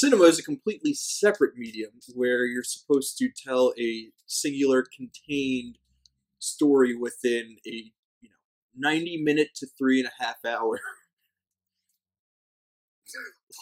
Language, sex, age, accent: English, male, 20-39, American